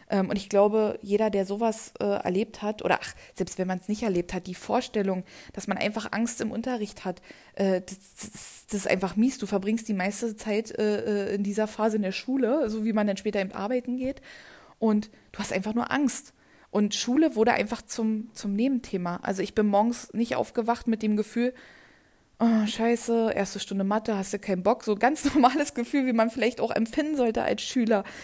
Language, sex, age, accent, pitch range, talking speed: German, female, 20-39, German, 200-235 Hz, 210 wpm